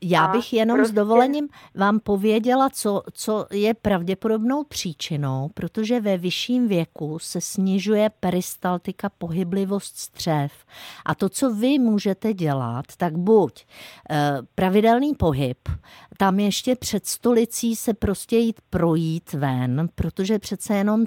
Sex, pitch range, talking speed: female, 160-205 Hz, 125 wpm